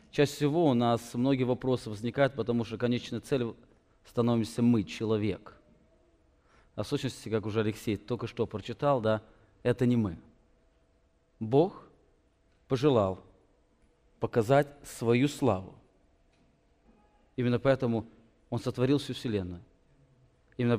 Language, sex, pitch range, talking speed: English, male, 105-130 Hz, 115 wpm